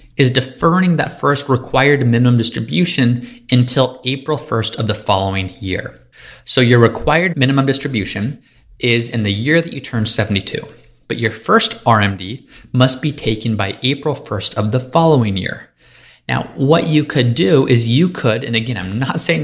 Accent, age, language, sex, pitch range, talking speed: American, 30-49, English, male, 105-140 Hz, 165 wpm